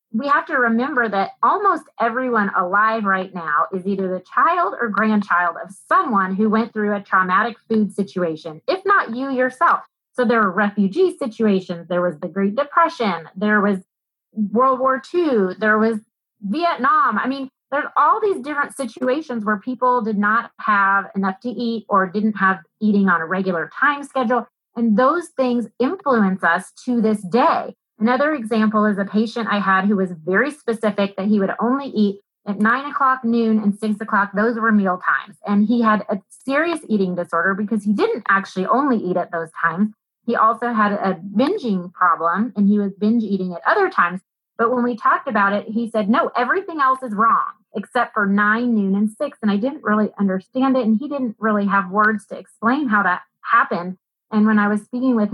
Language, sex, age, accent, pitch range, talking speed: English, female, 30-49, American, 200-250 Hz, 195 wpm